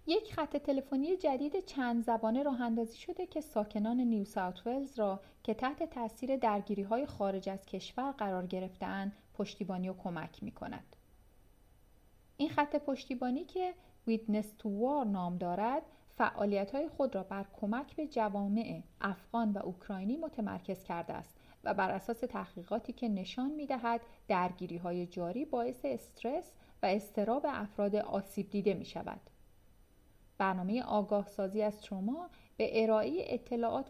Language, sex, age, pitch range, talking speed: Persian, female, 40-59, 195-245 Hz, 130 wpm